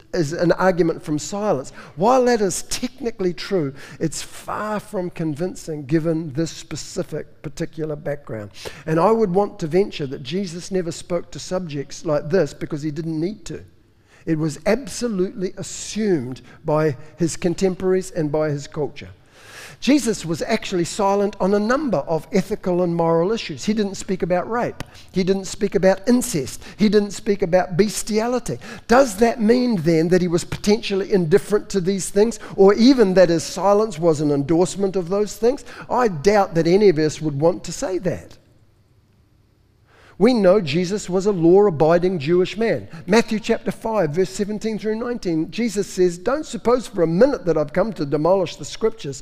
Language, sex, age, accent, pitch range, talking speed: English, male, 50-69, Australian, 160-205 Hz, 170 wpm